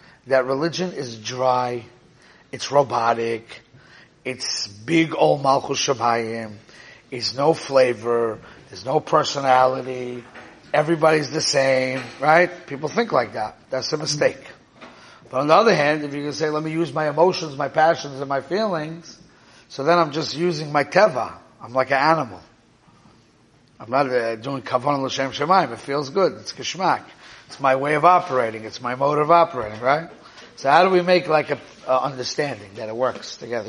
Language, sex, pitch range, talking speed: English, male, 125-170 Hz, 165 wpm